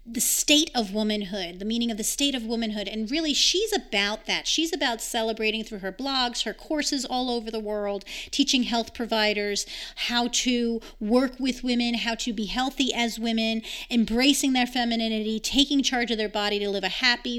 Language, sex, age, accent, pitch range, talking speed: English, female, 30-49, American, 215-250 Hz, 185 wpm